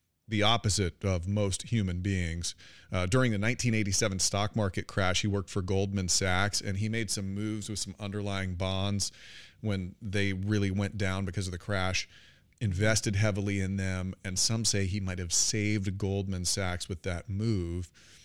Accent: American